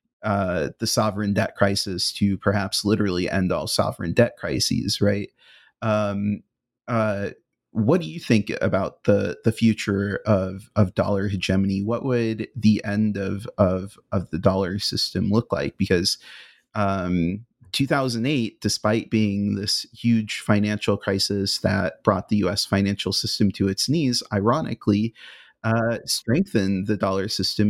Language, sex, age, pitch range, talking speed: English, male, 30-49, 100-115 Hz, 140 wpm